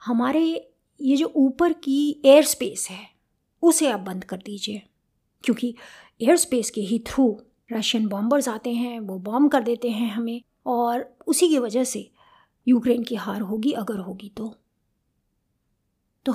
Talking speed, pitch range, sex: 155 wpm, 220-270 Hz, female